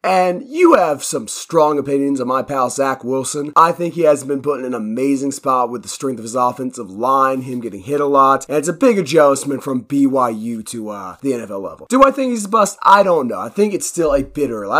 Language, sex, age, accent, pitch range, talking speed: English, male, 30-49, American, 130-200 Hz, 245 wpm